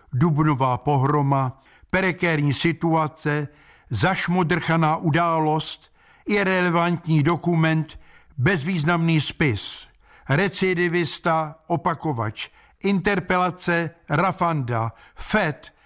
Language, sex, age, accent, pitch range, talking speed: Czech, male, 60-79, native, 140-180 Hz, 55 wpm